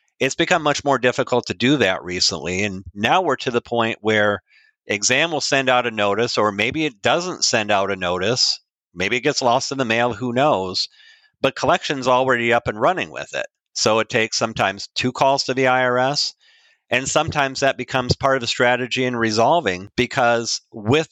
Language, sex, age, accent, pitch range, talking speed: English, male, 50-69, American, 110-135 Hz, 195 wpm